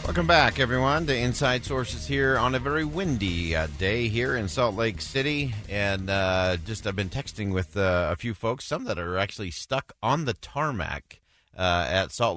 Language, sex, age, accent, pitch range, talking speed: English, male, 40-59, American, 90-110 Hz, 190 wpm